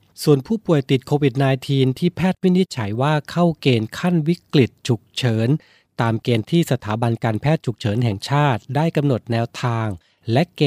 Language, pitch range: Thai, 115-140 Hz